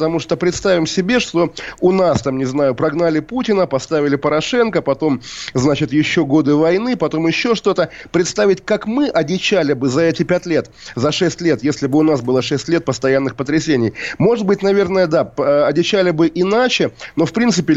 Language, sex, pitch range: Russian, male, 145-185 Hz